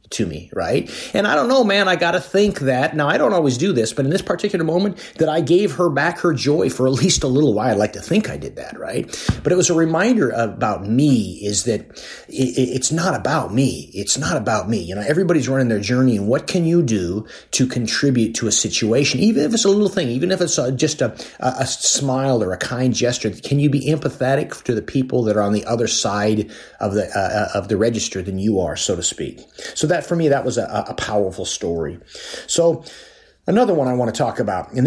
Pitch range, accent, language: 110-150 Hz, American, English